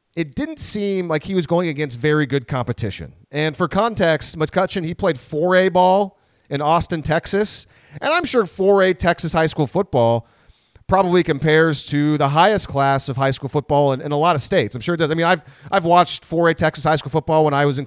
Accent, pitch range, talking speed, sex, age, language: American, 140-175 Hz, 215 wpm, male, 40-59, English